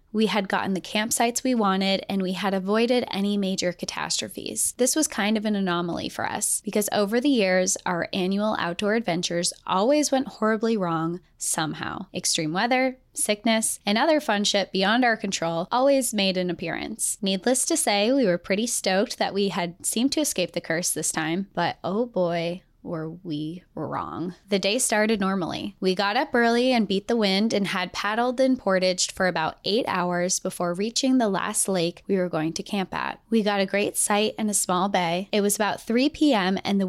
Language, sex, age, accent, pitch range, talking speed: English, female, 20-39, American, 185-230 Hz, 195 wpm